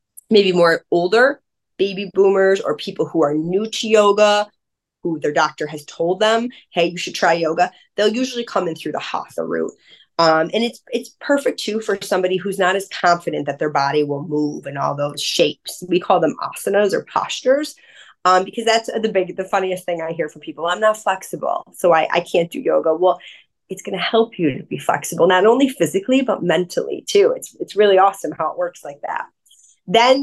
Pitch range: 155-215 Hz